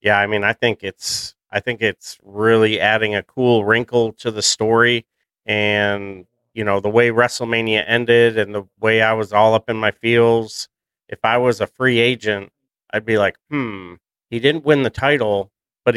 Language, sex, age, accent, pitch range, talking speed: English, male, 40-59, American, 105-120 Hz, 190 wpm